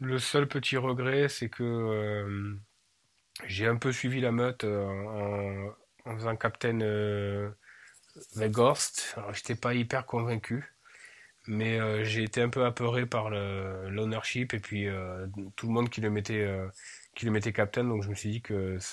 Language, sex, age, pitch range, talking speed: French, male, 20-39, 105-120 Hz, 180 wpm